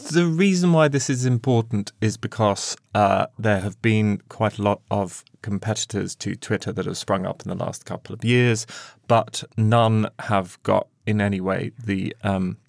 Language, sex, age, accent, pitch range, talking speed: English, male, 20-39, British, 100-120 Hz, 180 wpm